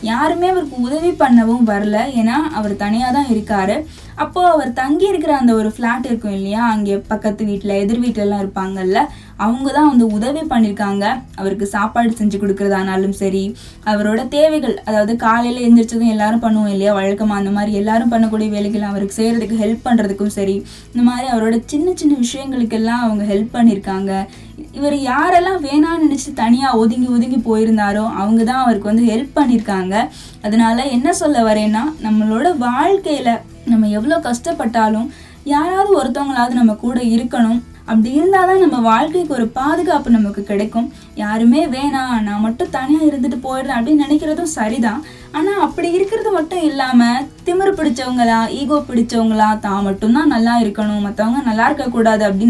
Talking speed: 140 wpm